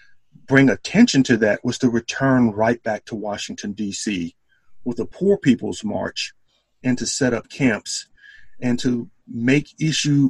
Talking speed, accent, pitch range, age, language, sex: 150 wpm, American, 110-135 Hz, 50-69, English, male